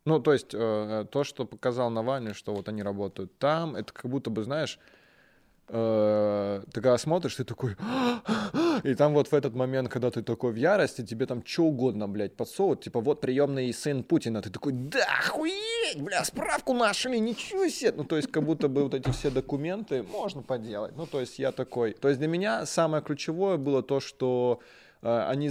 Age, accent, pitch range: 20-39, native, 110-150 Hz